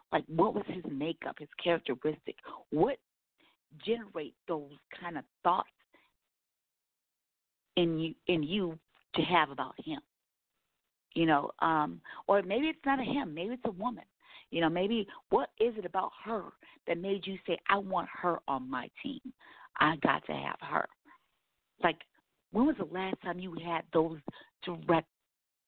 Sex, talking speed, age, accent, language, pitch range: female, 155 wpm, 50-69, American, English, 150-230 Hz